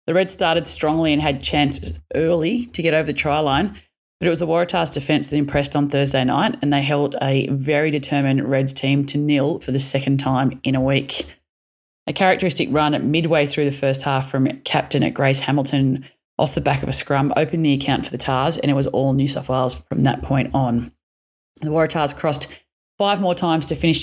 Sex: female